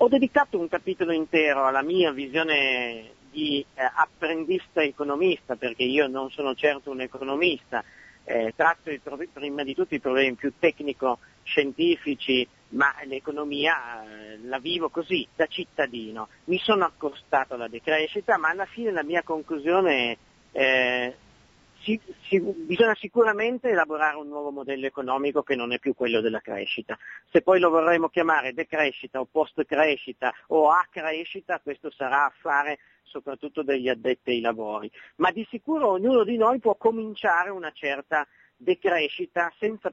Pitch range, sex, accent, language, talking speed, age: 130-175 Hz, male, native, Italian, 145 wpm, 50-69